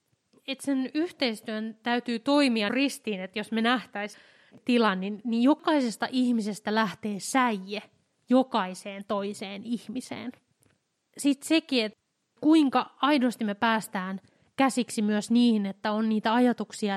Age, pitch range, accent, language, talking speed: 20-39, 205-240 Hz, native, Finnish, 120 wpm